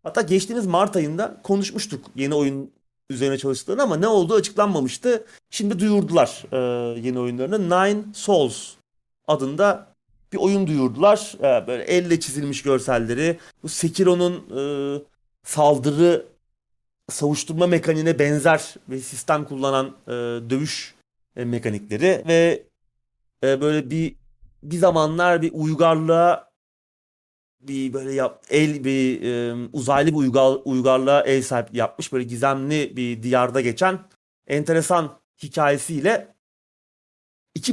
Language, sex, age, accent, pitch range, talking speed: Turkish, male, 30-49, native, 130-175 Hz, 105 wpm